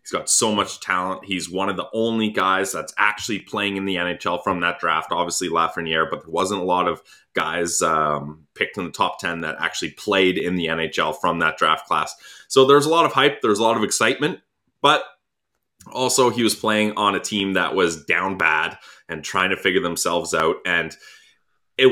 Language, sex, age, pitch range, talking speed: English, male, 20-39, 95-120 Hz, 210 wpm